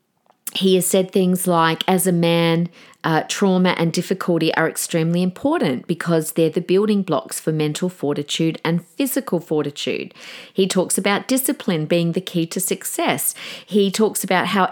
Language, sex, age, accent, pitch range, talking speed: English, female, 40-59, Australian, 175-250 Hz, 160 wpm